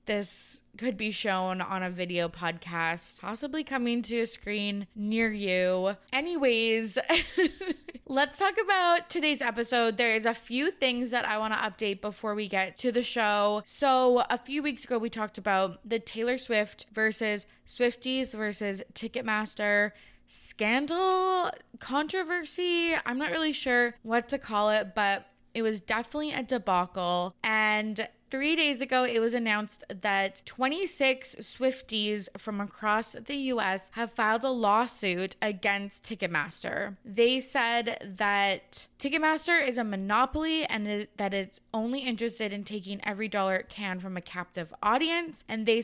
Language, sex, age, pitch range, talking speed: English, female, 20-39, 205-260 Hz, 150 wpm